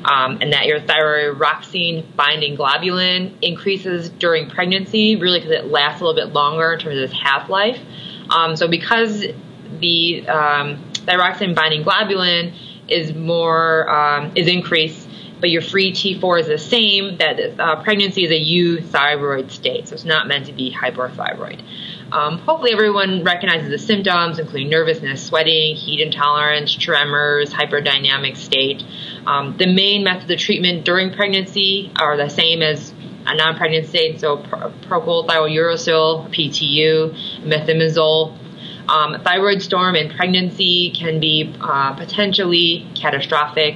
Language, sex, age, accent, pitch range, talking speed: English, female, 20-39, American, 150-180 Hz, 135 wpm